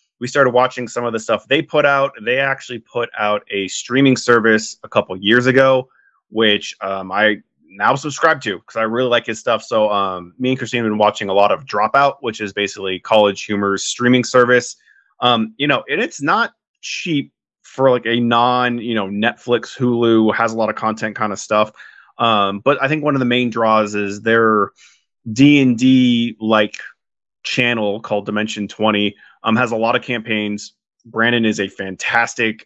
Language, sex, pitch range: English, male, 105-125 Hz